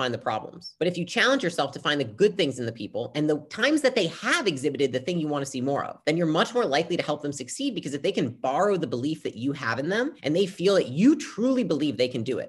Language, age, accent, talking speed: English, 30-49, American, 300 wpm